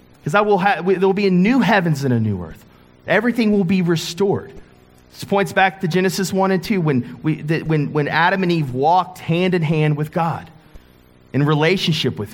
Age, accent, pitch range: 30-49, American, 140-190 Hz